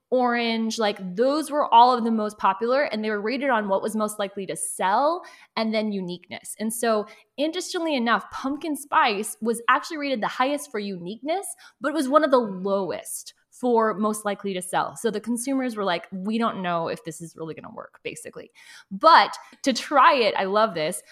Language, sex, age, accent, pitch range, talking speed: English, female, 20-39, American, 195-255 Hz, 200 wpm